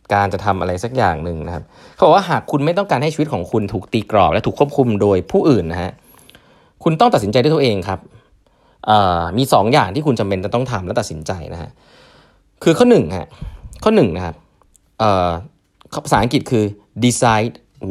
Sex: male